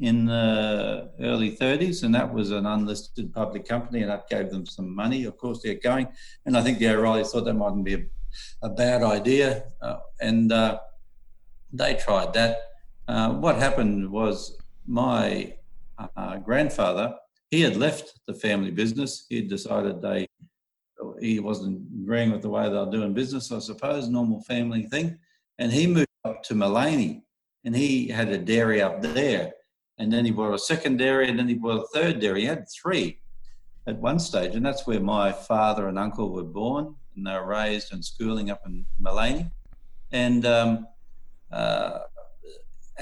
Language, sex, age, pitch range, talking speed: English, male, 50-69, 100-120 Hz, 175 wpm